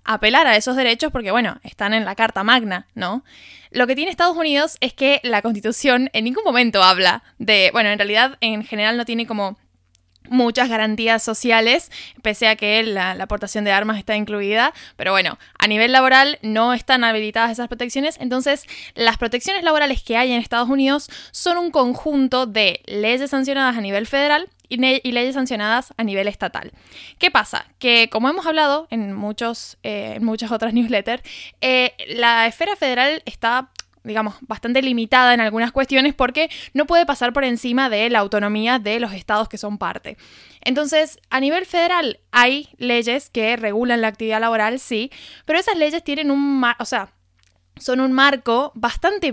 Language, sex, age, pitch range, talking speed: Spanish, female, 10-29, 220-270 Hz, 180 wpm